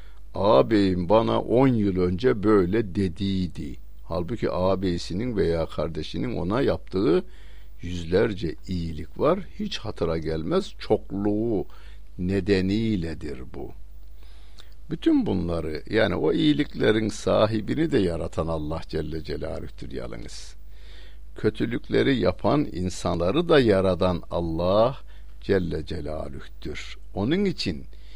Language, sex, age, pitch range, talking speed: Turkish, male, 60-79, 80-100 Hz, 95 wpm